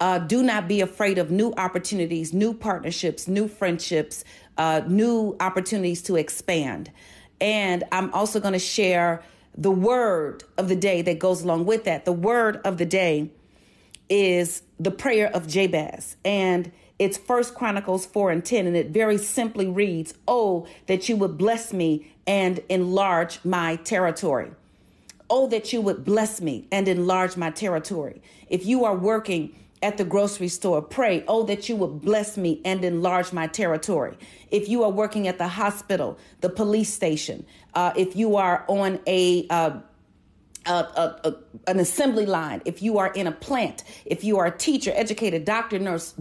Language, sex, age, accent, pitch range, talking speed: English, female, 40-59, American, 170-215 Hz, 170 wpm